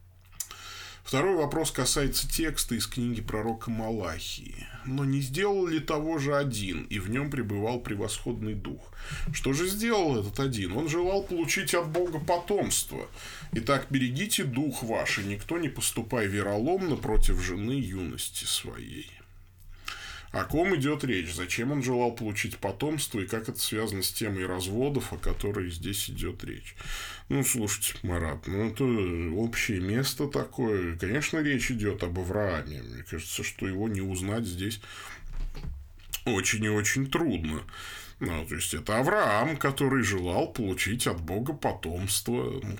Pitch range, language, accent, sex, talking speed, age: 95-135 Hz, Russian, native, male, 145 wpm, 20-39